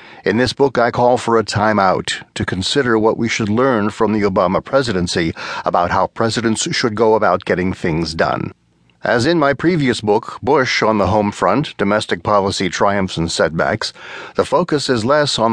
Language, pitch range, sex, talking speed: English, 105-130 Hz, male, 180 wpm